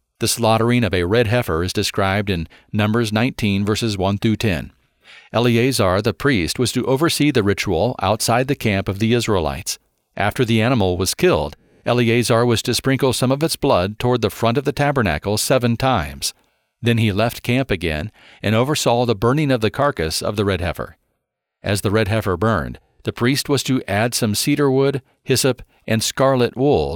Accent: American